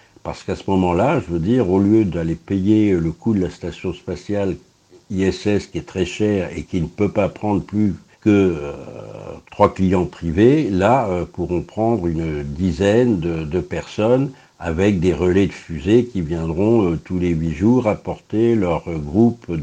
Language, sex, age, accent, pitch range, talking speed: French, male, 60-79, French, 85-105 Hz, 180 wpm